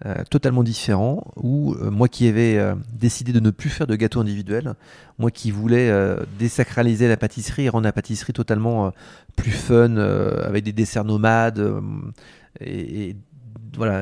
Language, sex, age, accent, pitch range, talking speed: French, male, 30-49, French, 105-120 Hz, 175 wpm